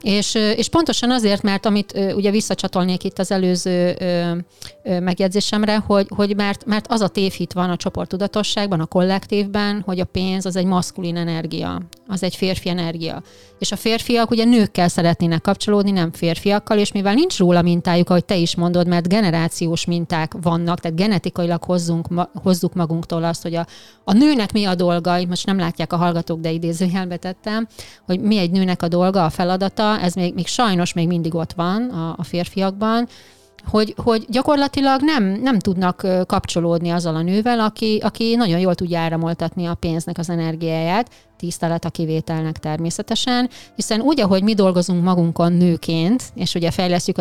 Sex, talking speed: female, 175 wpm